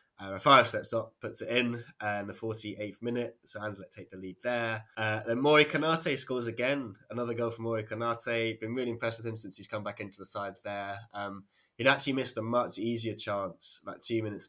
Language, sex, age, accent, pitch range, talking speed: English, male, 10-29, British, 105-120 Hz, 225 wpm